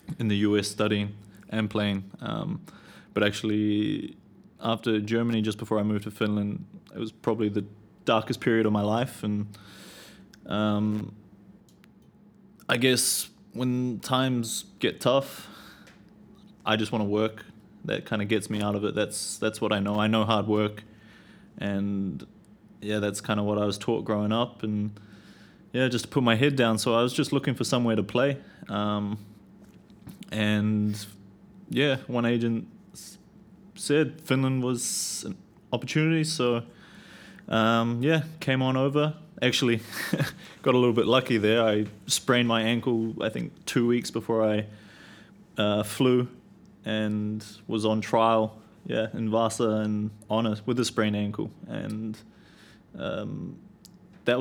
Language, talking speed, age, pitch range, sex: Finnish, 150 wpm, 20-39, 105-120 Hz, male